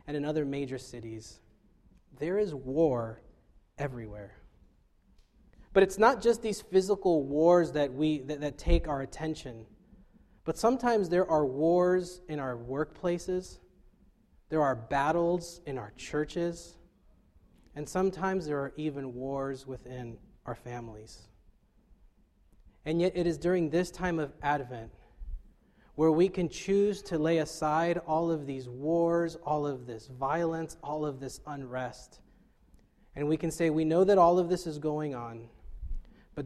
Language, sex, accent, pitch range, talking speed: English, male, American, 130-170 Hz, 145 wpm